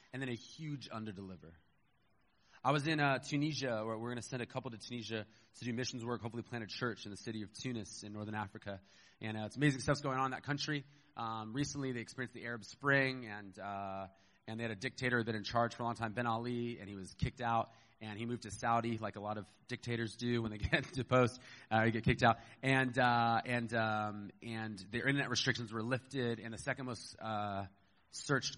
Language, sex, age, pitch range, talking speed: English, male, 30-49, 110-130 Hz, 235 wpm